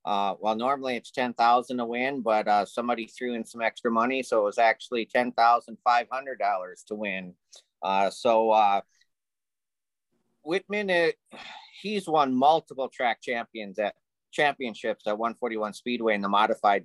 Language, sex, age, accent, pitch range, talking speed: English, male, 30-49, American, 110-140 Hz, 165 wpm